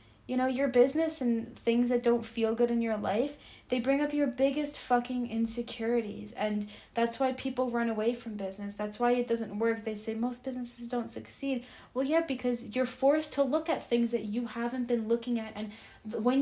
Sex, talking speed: female, 205 wpm